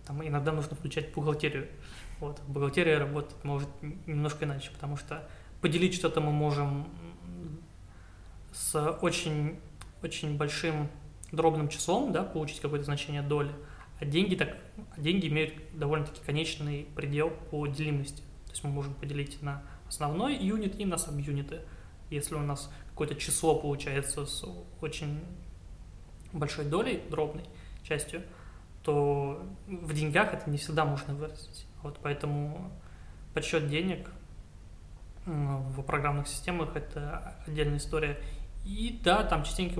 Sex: male